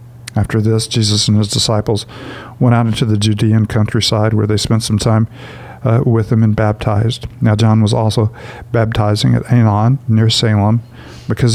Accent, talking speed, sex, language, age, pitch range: American, 165 wpm, male, English, 50-69, 110-120 Hz